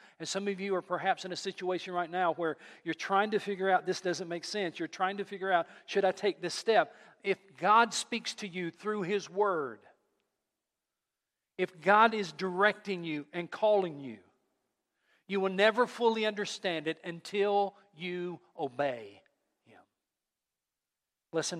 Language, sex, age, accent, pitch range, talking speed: English, male, 50-69, American, 165-200 Hz, 160 wpm